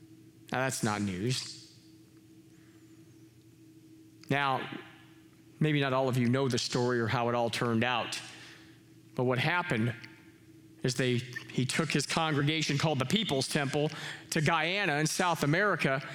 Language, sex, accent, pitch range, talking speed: English, male, American, 130-165 Hz, 135 wpm